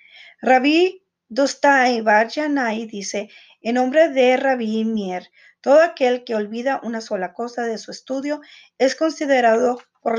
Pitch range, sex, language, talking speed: 215-270 Hz, female, Spanish, 130 wpm